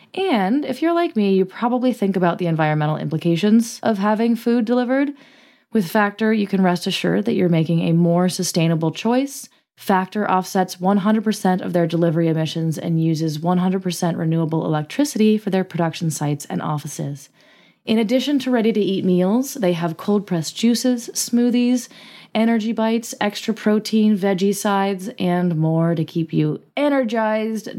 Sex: female